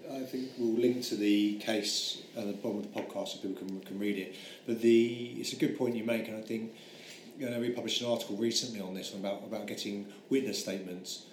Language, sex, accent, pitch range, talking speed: English, male, British, 100-120 Hz, 235 wpm